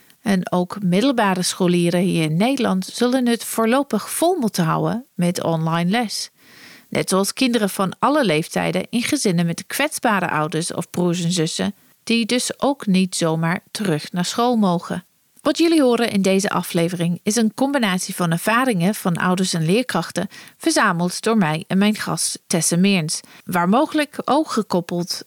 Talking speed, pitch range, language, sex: 160 wpm, 170-230 Hz, Dutch, female